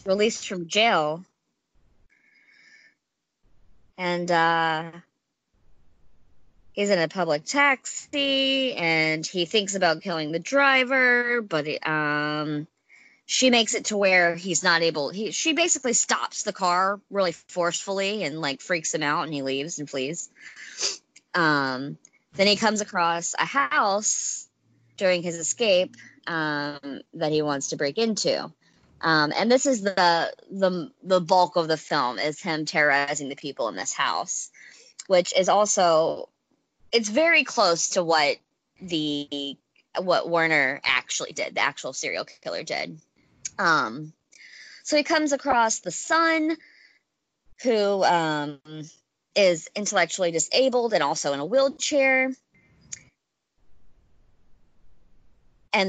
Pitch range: 155-240 Hz